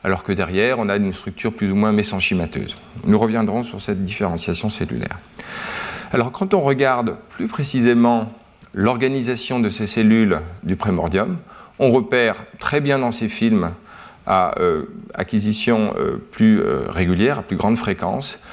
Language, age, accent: French, 40-59, French